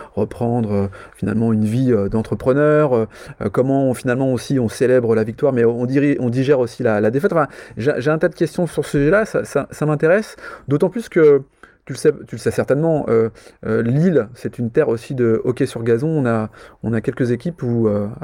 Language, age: French, 30-49